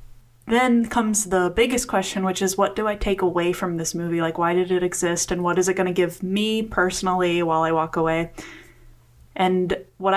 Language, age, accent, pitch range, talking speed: English, 20-39, American, 165-195 Hz, 205 wpm